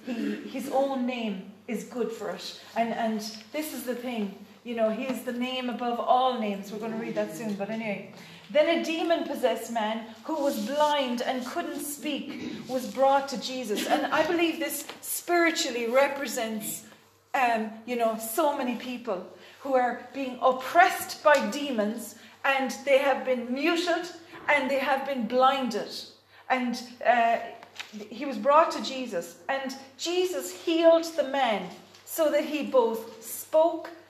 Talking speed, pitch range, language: 160 wpm, 230-295 Hz, English